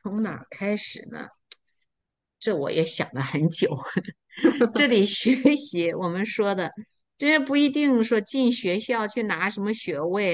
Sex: female